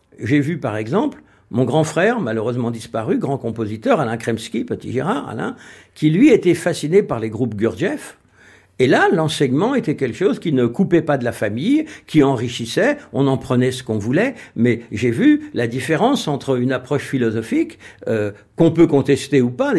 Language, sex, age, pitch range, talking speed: French, male, 60-79, 120-175 Hz, 180 wpm